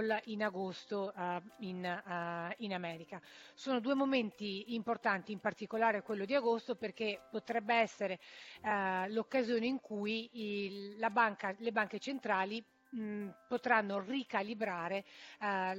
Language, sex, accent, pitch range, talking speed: Italian, female, native, 185-220 Hz, 95 wpm